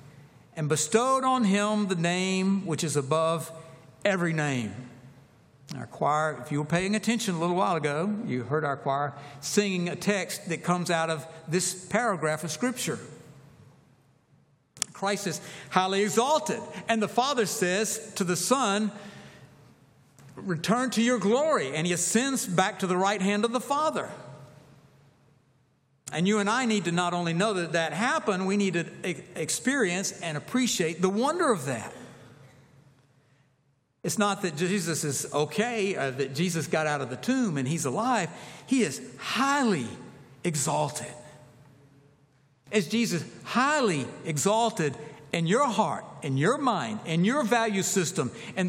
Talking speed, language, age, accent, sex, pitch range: 150 wpm, English, 60-79, American, male, 145-210 Hz